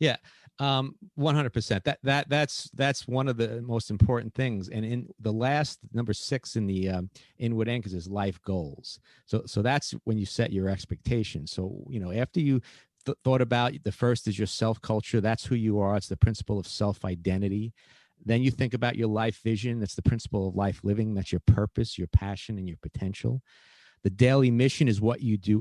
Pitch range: 100-125 Hz